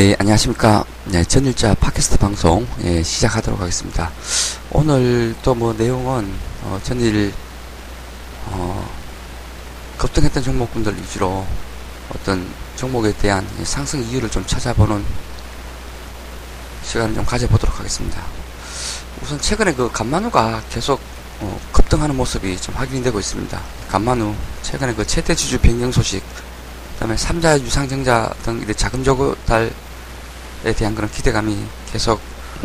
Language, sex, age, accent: Korean, male, 20-39, native